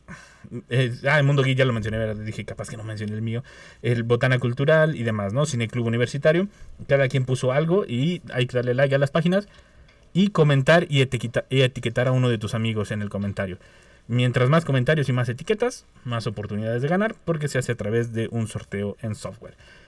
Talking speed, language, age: 205 wpm, Spanish, 30-49